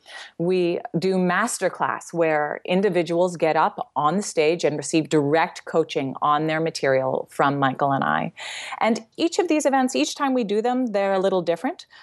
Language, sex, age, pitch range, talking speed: English, female, 30-49, 155-190 Hz, 175 wpm